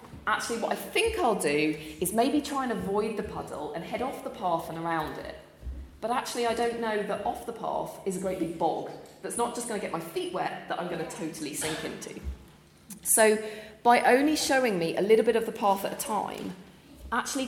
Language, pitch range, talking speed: English, 180-245 Hz, 225 wpm